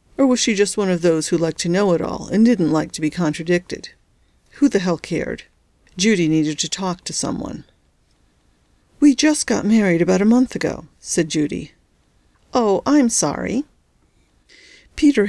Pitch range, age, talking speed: 170-235 Hz, 50-69, 170 wpm